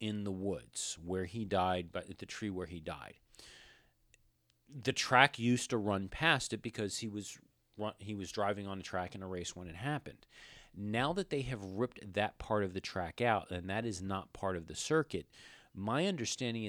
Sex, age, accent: male, 40-59, American